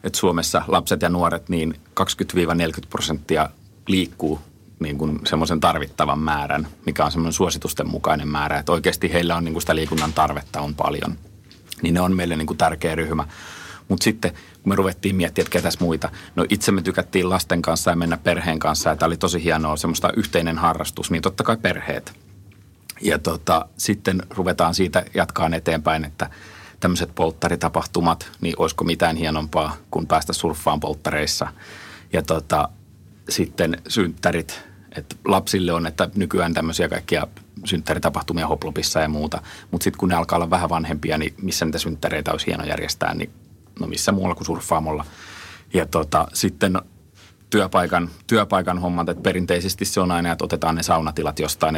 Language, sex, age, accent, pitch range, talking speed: Finnish, male, 30-49, native, 80-90 Hz, 155 wpm